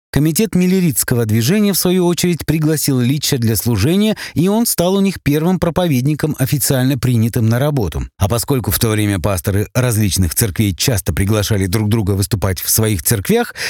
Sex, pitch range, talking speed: male, 110-170 Hz, 160 wpm